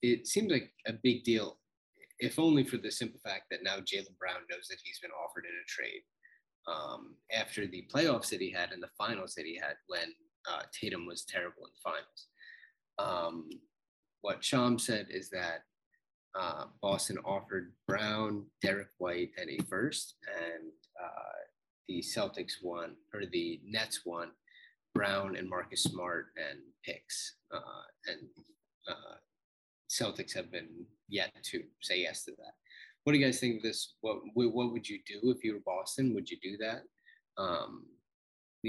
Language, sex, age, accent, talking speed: English, male, 20-39, American, 170 wpm